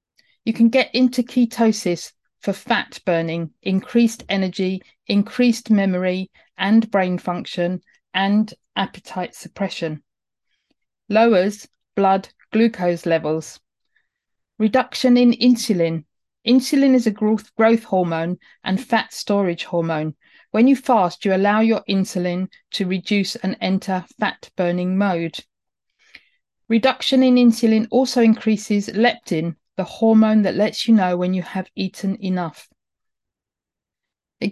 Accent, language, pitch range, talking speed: British, English, 180-235 Hz, 115 wpm